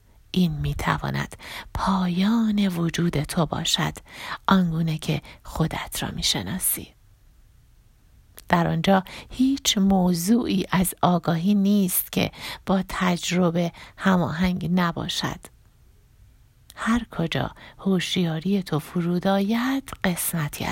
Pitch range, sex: 155-200 Hz, female